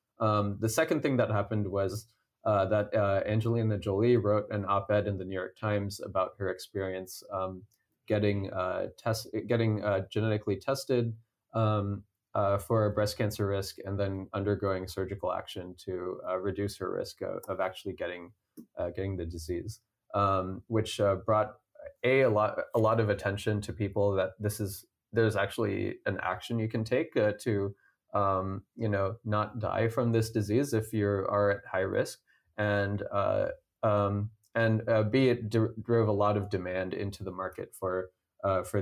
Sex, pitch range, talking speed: male, 100-110 Hz, 175 wpm